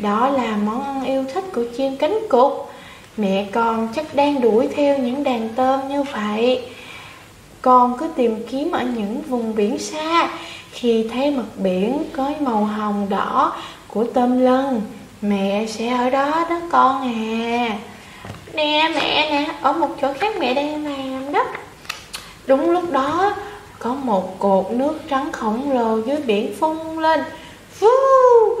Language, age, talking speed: Vietnamese, 20-39, 155 wpm